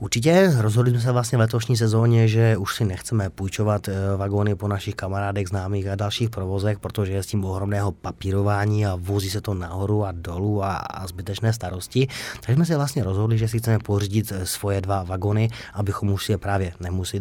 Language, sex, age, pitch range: Czech, male, 30-49, 95-110 Hz